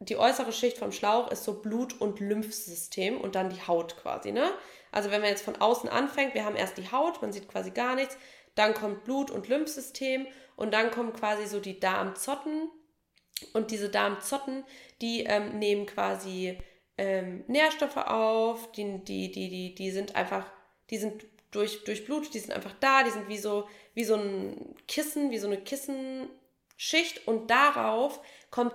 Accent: German